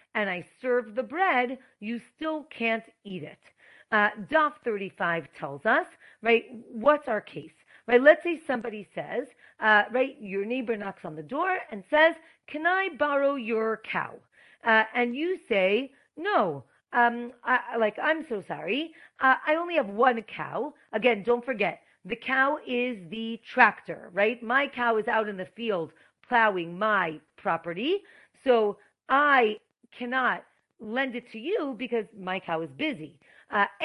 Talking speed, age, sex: 155 wpm, 40-59, female